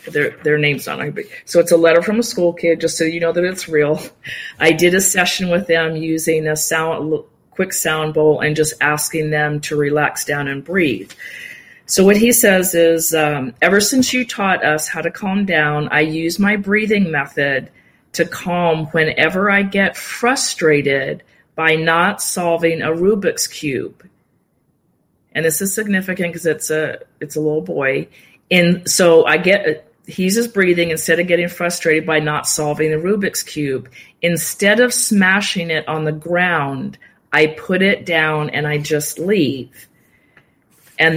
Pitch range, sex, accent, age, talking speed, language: 155-185 Hz, female, American, 40-59, 170 wpm, English